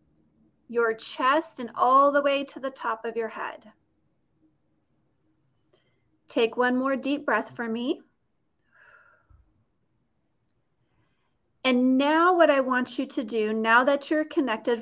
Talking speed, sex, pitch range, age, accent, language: 125 wpm, female, 225-290 Hz, 30-49, American, English